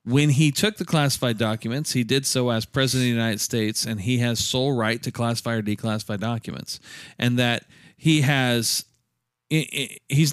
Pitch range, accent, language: 120-150 Hz, American, English